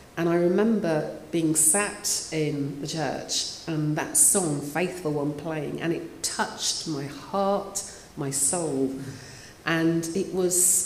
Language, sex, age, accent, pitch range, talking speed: English, female, 40-59, British, 150-180 Hz, 135 wpm